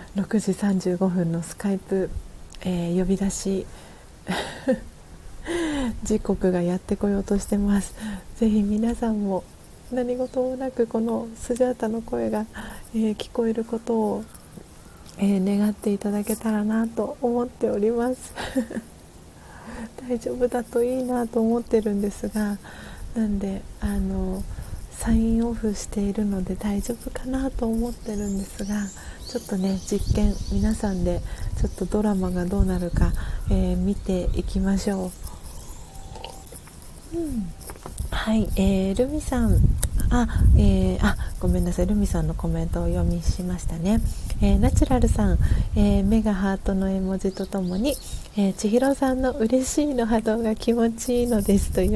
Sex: female